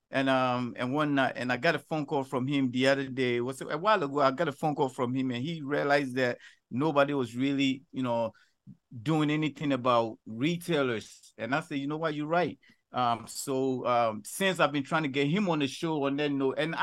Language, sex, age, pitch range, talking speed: English, male, 50-69, 130-170 Hz, 230 wpm